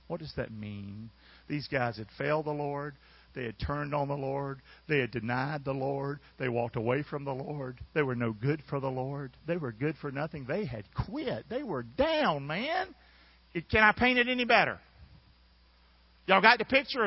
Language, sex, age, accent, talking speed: English, male, 50-69, American, 195 wpm